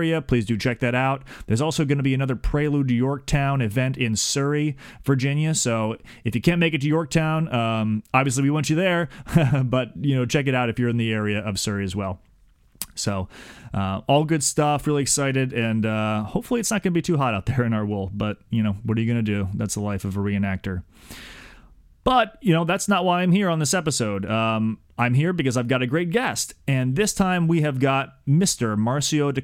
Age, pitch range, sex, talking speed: 30-49, 115-150 Hz, male, 225 wpm